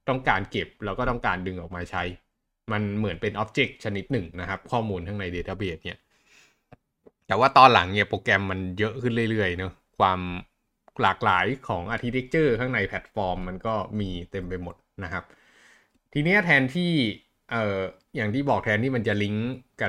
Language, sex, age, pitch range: Thai, male, 20-39, 95-125 Hz